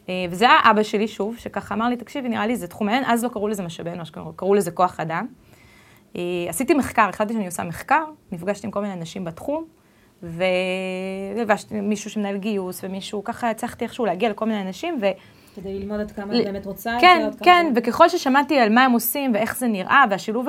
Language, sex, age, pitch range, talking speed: Hebrew, female, 20-39, 185-235 Hz, 195 wpm